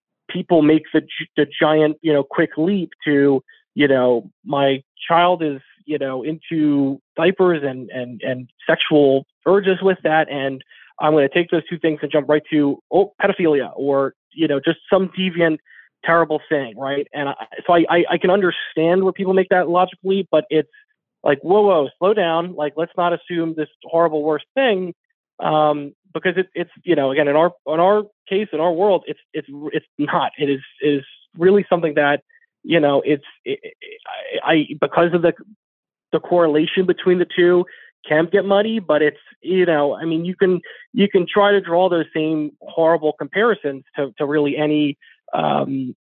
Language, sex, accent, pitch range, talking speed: English, male, American, 145-180 Hz, 180 wpm